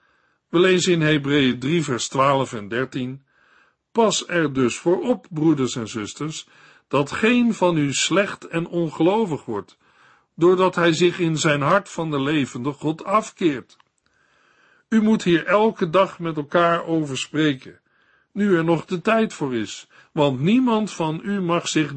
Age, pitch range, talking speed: 50-69, 140-180 Hz, 160 wpm